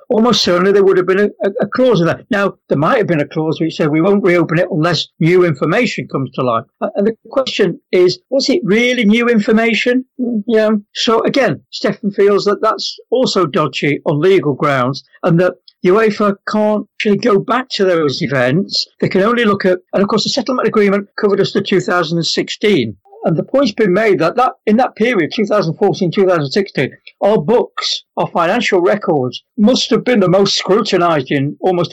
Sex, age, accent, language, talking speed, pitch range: male, 60-79, British, English, 190 wpm, 160-215 Hz